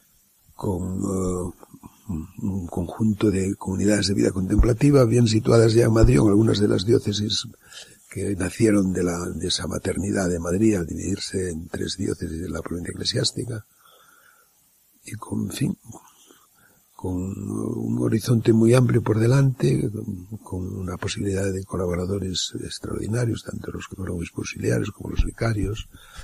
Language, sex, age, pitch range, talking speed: Spanish, male, 60-79, 95-115 Hz, 140 wpm